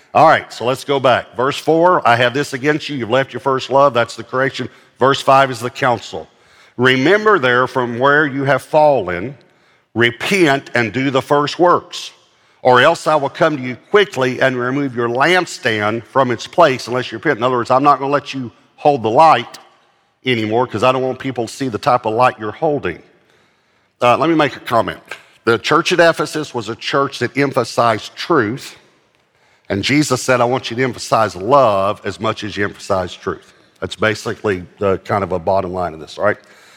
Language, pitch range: English, 115-140 Hz